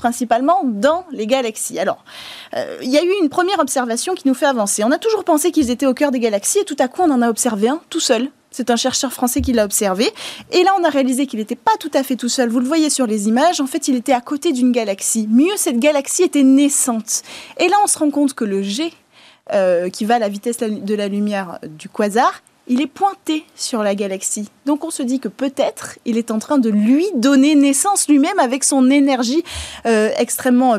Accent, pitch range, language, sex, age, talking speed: French, 230-300 Hz, French, female, 20-39, 240 wpm